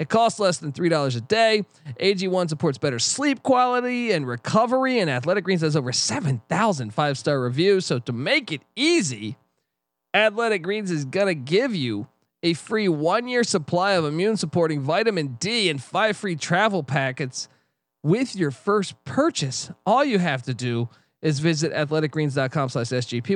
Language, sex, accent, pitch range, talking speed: English, male, American, 145-195 Hz, 150 wpm